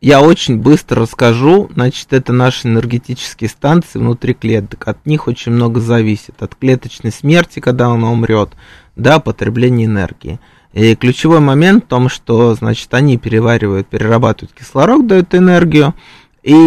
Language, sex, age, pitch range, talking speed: Russian, male, 20-39, 110-150 Hz, 140 wpm